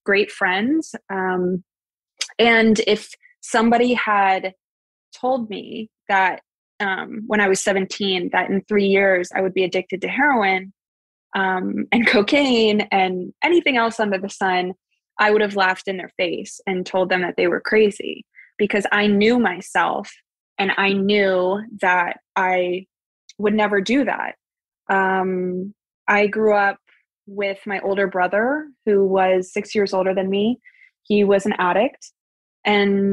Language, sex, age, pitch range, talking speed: English, female, 20-39, 190-220 Hz, 145 wpm